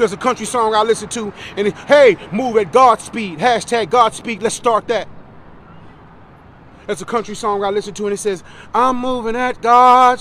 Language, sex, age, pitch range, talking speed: English, male, 30-49, 200-245 Hz, 190 wpm